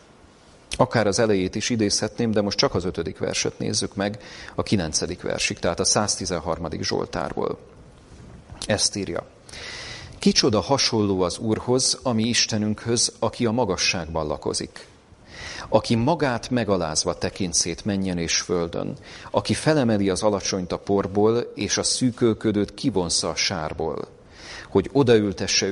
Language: Hungarian